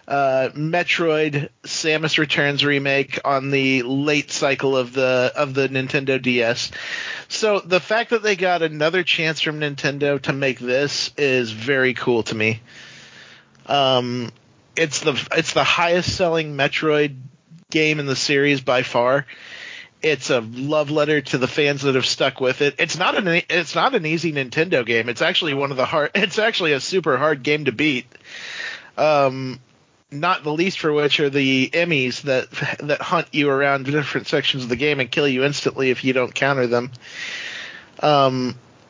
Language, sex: English, male